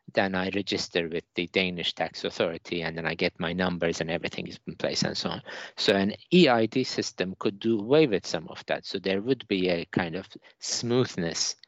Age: 50-69